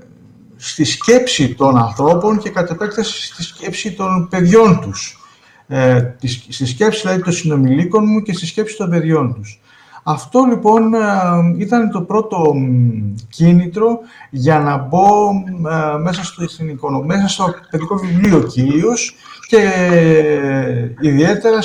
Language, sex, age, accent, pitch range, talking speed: Greek, male, 60-79, native, 140-200 Hz, 120 wpm